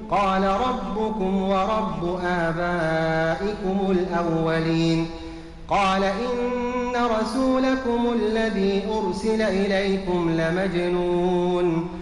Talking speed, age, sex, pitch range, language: 60 wpm, 30-49, male, 165-215 Hz, Arabic